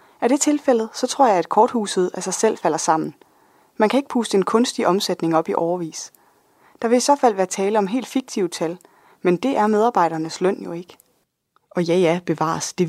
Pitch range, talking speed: 170-225 Hz, 215 wpm